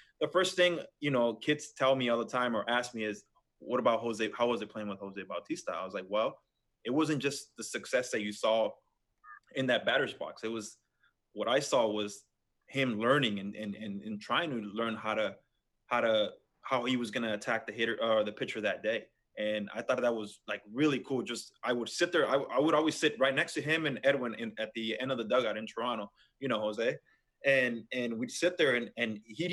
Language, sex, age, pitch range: English, male, 20-39, 115-155 Hz